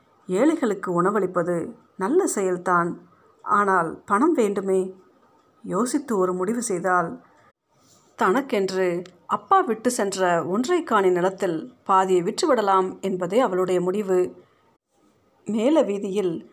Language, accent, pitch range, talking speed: Tamil, native, 185-225 Hz, 85 wpm